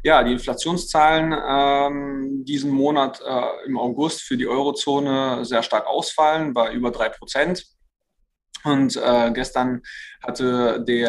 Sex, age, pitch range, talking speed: male, 20-39, 120-145 Hz, 125 wpm